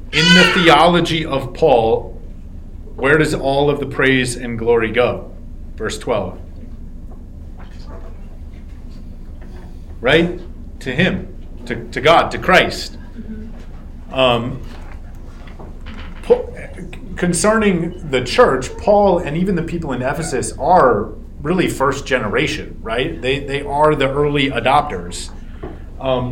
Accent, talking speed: American, 110 wpm